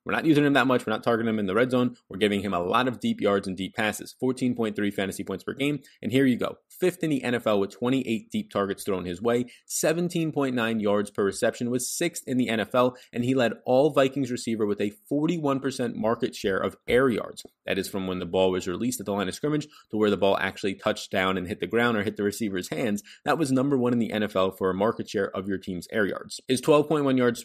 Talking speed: 255 wpm